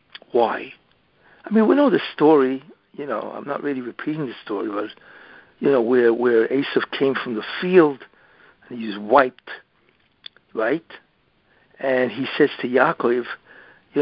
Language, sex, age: English, male, 60-79